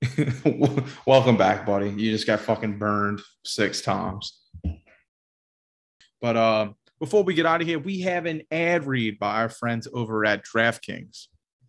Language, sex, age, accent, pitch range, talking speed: English, male, 30-49, American, 115-160 Hz, 150 wpm